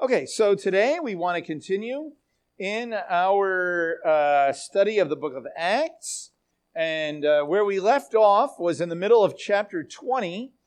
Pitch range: 160-220 Hz